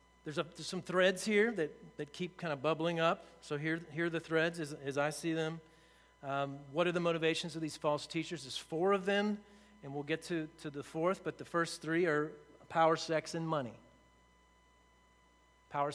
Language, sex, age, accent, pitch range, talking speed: English, male, 40-59, American, 130-160 Hz, 205 wpm